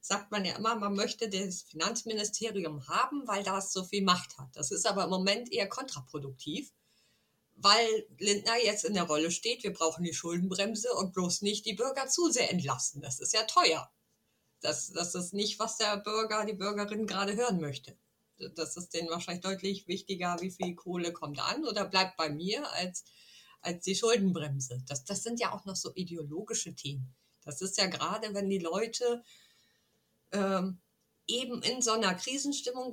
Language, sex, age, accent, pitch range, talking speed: German, female, 50-69, German, 170-215 Hz, 180 wpm